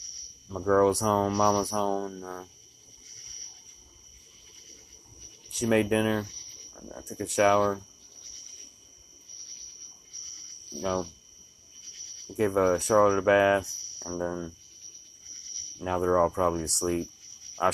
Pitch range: 85-100 Hz